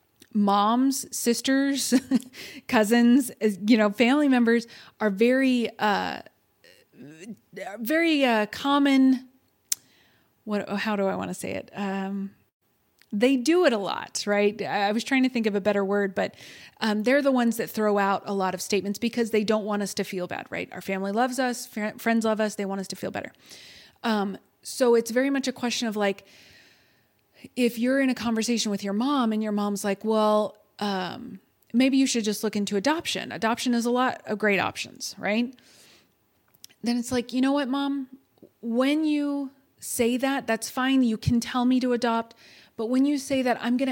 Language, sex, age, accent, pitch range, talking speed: English, female, 30-49, American, 210-260 Hz, 185 wpm